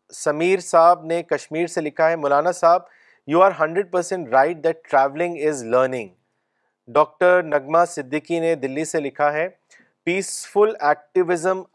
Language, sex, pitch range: Urdu, male, 140-170 Hz